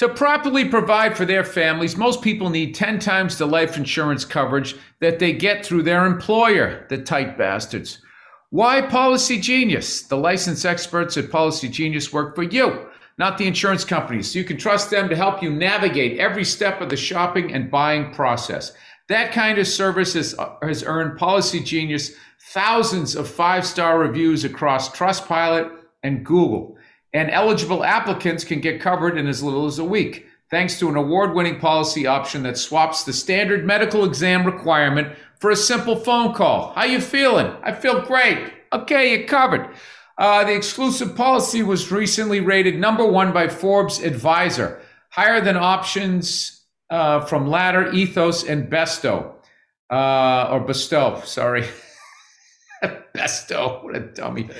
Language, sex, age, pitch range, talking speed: English, male, 50-69, 155-205 Hz, 160 wpm